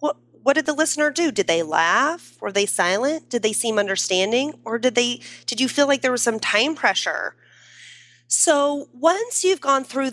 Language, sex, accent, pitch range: English, female, American, 195-255 Hz